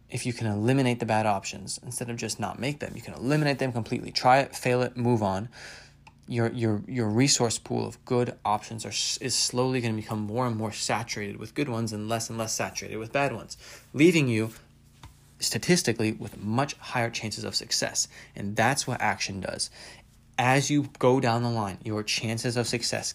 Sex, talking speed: male, 200 wpm